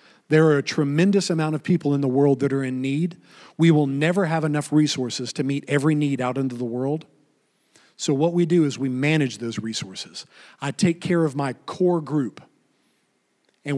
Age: 40-59